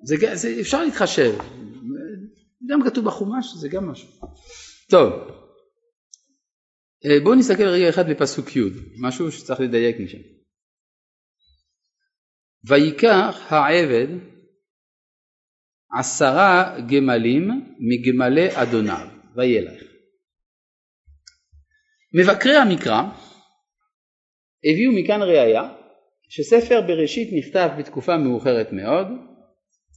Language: Hebrew